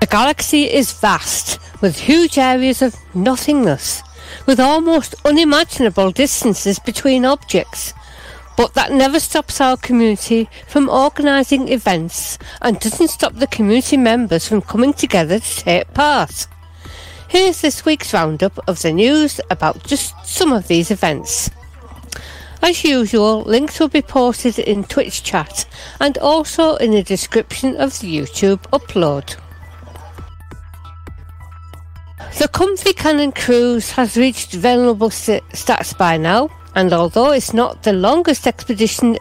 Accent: British